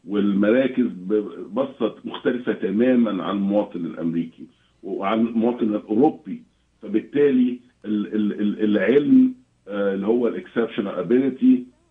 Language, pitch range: Arabic, 110-140 Hz